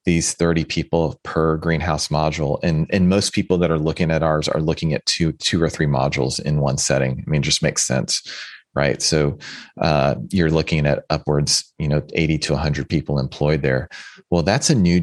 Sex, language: male, English